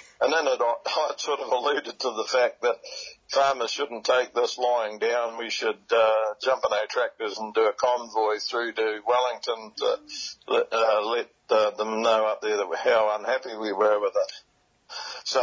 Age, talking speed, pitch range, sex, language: 60-79, 185 wpm, 115-150 Hz, male, English